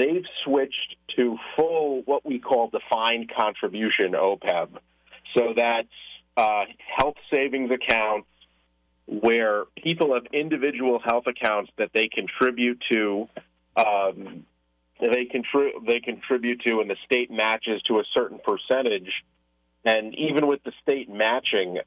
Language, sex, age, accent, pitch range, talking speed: English, male, 40-59, American, 100-125 Hz, 120 wpm